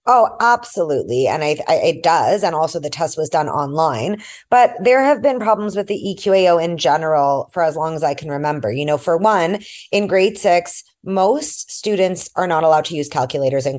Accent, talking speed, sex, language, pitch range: American, 195 wpm, female, English, 160-215 Hz